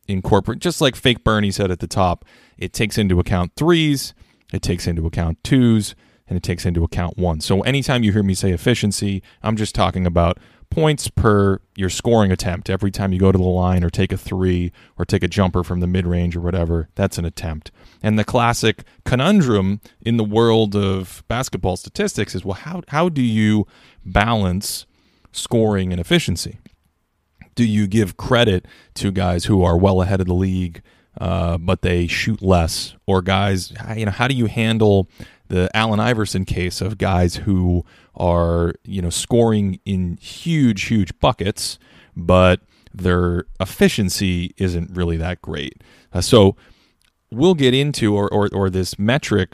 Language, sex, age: English, male, 20-39